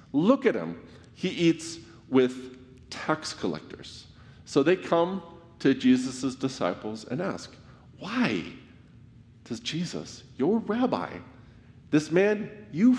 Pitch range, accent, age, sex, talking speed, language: 115-145 Hz, American, 40-59, male, 110 wpm, English